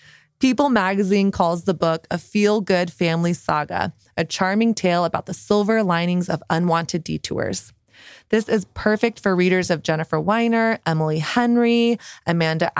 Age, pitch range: 20-39, 170-220 Hz